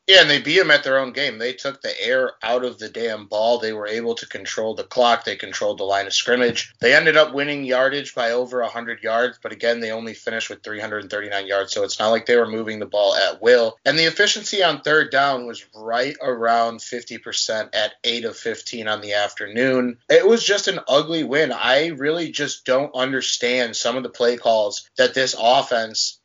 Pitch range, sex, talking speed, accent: 115-160 Hz, male, 215 wpm, American